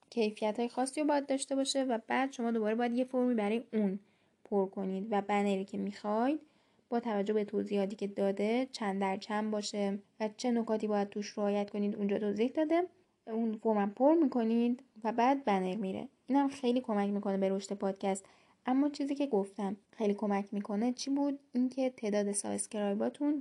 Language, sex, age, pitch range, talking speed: Persian, female, 10-29, 205-250 Hz, 180 wpm